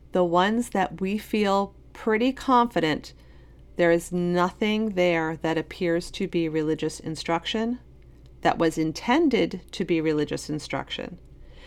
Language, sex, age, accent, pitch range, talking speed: English, female, 40-59, American, 160-205 Hz, 125 wpm